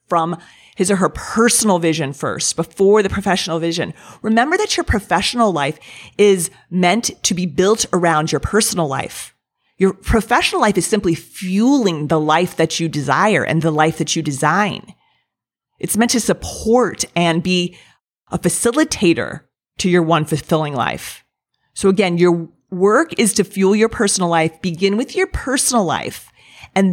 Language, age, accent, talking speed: English, 30-49, American, 160 wpm